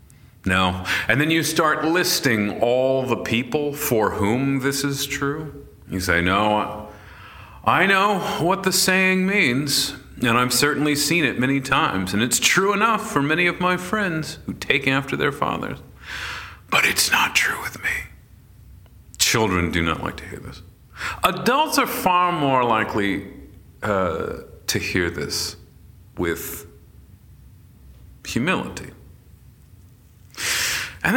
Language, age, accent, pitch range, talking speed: English, 40-59, American, 110-155 Hz, 135 wpm